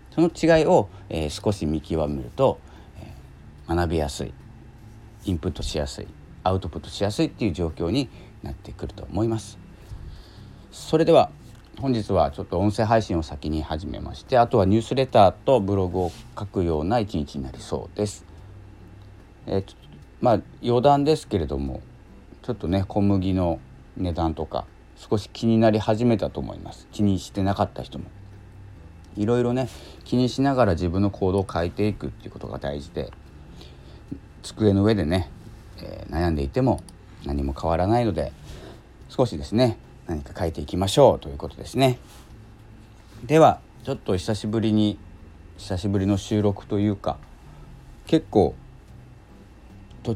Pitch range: 85-110 Hz